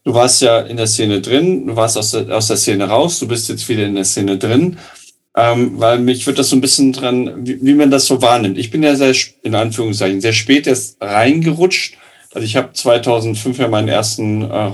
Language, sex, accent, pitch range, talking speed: German, male, German, 110-140 Hz, 230 wpm